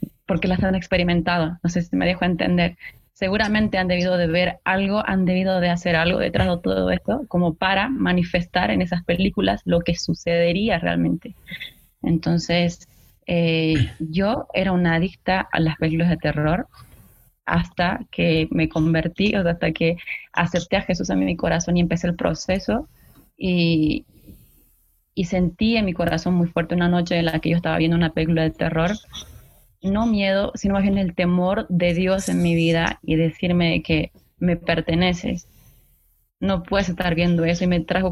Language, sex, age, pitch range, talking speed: Spanish, female, 20-39, 165-185 Hz, 170 wpm